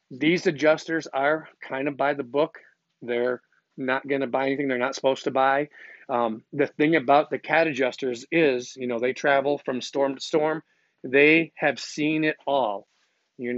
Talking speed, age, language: 175 wpm, 40-59, English